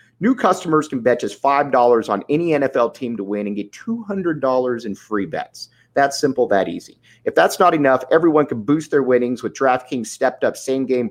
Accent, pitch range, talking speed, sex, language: American, 115-150 Hz, 190 wpm, male, English